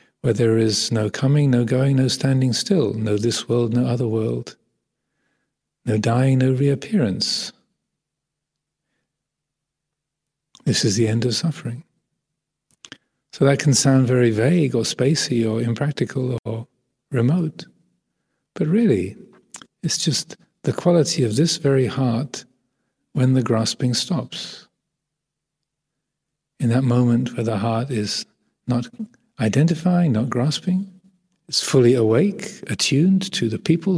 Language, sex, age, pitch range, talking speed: English, male, 40-59, 120-155 Hz, 125 wpm